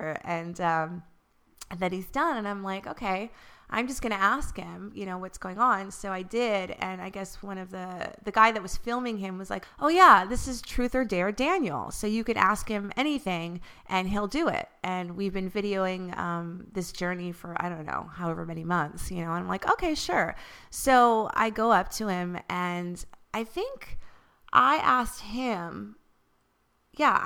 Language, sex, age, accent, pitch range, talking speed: English, female, 30-49, American, 185-245 Hz, 195 wpm